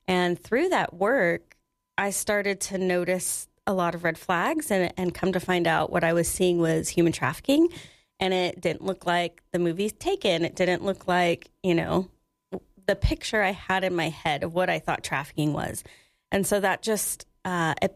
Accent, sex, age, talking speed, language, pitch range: American, female, 30-49, 195 wpm, English, 170-195 Hz